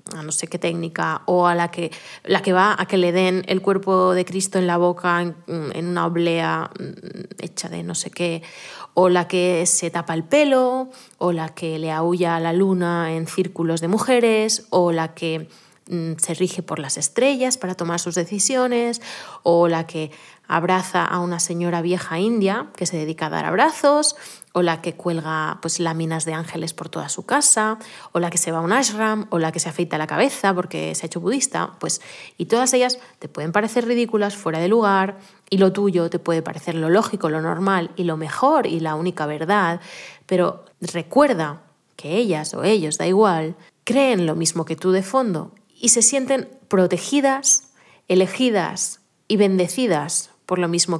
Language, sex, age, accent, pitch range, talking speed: Spanish, female, 20-39, Spanish, 165-210 Hz, 190 wpm